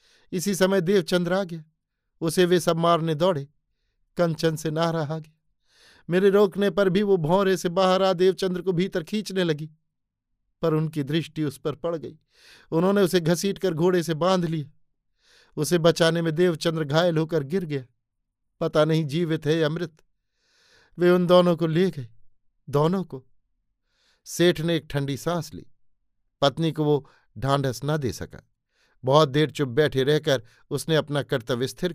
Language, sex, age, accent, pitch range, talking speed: Hindi, male, 50-69, native, 125-170 Hz, 160 wpm